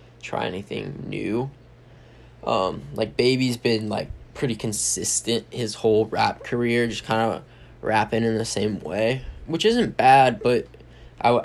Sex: male